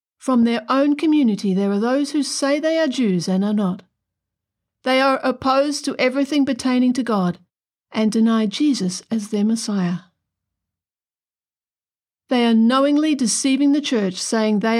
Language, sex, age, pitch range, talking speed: English, female, 50-69, 180-255 Hz, 150 wpm